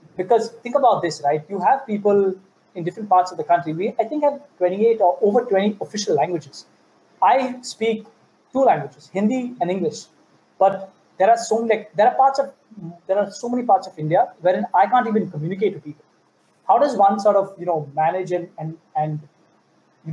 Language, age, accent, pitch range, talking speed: English, 20-39, Indian, 165-230 Hz, 195 wpm